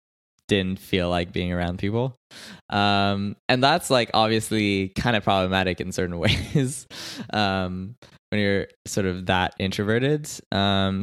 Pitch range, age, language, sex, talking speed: 90-115 Hz, 20-39, English, male, 135 wpm